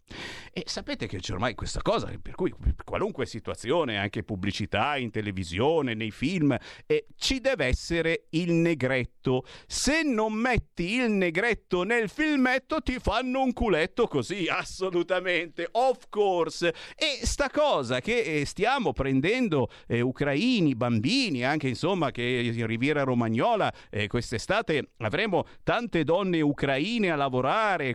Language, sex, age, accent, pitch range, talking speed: Italian, male, 50-69, native, 115-190 Hz, 135 wpm